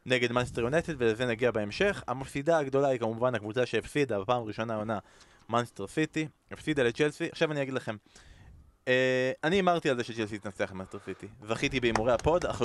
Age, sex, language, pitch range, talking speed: 20-39, male, Hebrew, 110-140 Hz, 170 wpm